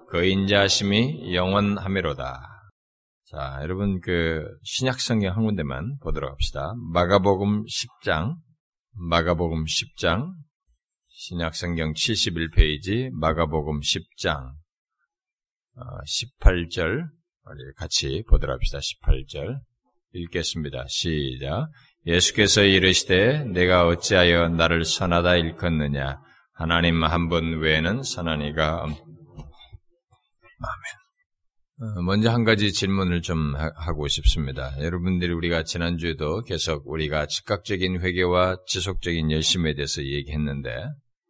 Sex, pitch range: male, 80-100 Hz